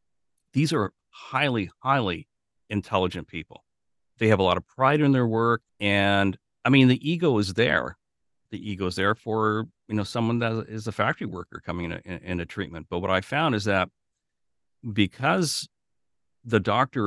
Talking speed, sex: 170 wpm, male